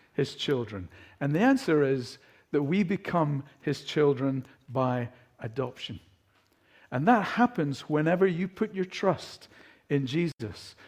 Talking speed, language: 125 wpm, English